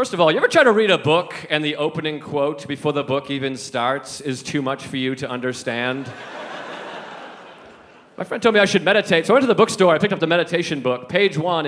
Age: 30-49